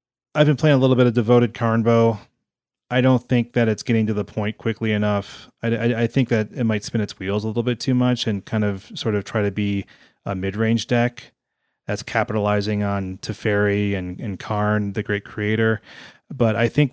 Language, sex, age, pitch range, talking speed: English, male, 30-49, 100-120 Hz, 215 wpm